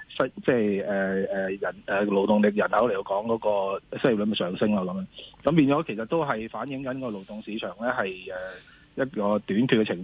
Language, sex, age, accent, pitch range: Chinese, male, 30-49, native, 105-135 Hz